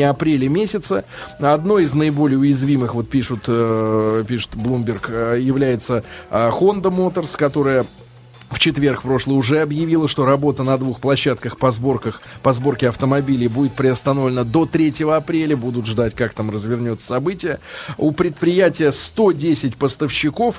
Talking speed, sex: 130 wpm, male